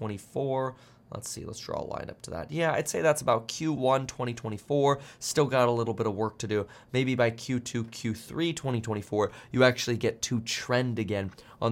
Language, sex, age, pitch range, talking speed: English, male, 20-39, 110-140 Hz, 195 wpm